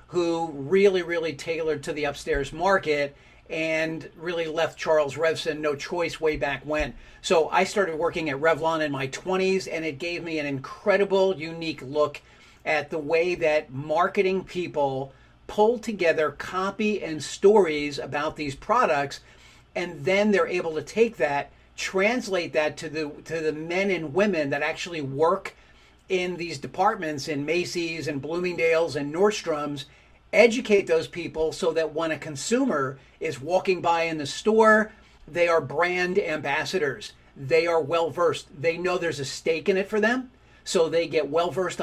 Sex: male